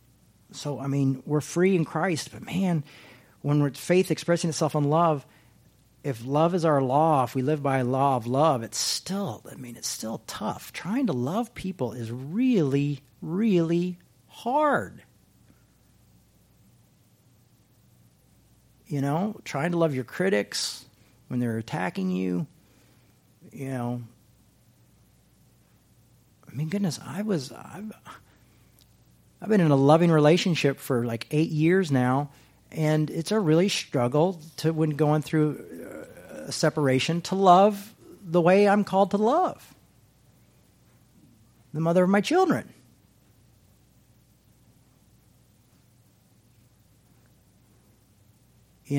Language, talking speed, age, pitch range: English, 120 wpm, 40-59, 125-175 Hz